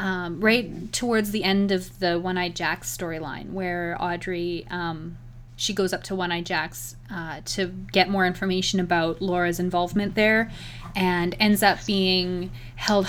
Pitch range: 165-195 Hz